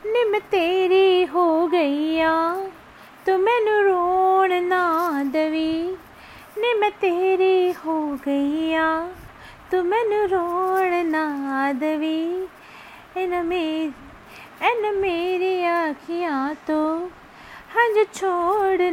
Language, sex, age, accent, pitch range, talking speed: Hindi, female, 30-49, native, 295-380 Hz, 80 wpm